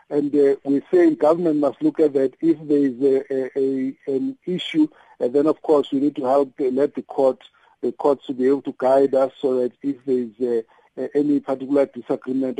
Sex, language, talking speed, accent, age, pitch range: male, English, 215 wpm, South African, 50-69, 130-150 Hz